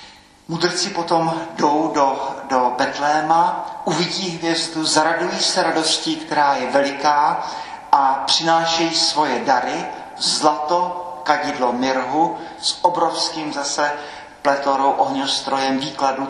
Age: 40-59